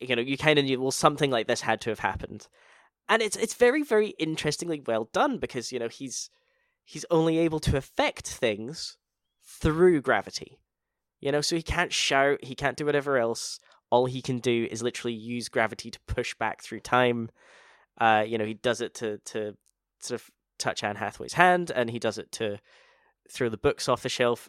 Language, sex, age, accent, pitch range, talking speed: English, male, 10-29, British, 115-155 Hz, 205 wpm